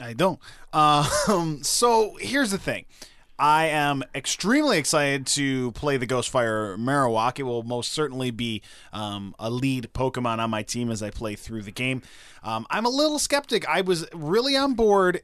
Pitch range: 130-175 Hz